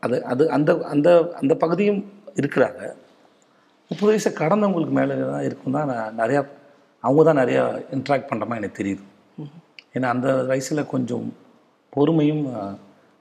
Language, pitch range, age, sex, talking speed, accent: Tamil, 125-160 Hz, 30-49, male, 125 wpm, native